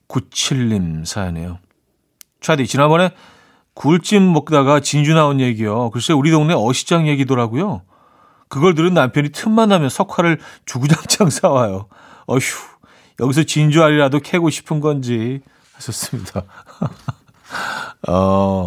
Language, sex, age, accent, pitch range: Korean, male, 40-59, native, 115-160 Hz